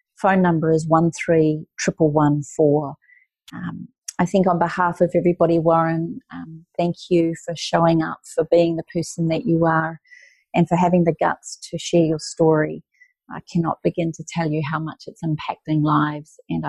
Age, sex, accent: 40-59, female, Australian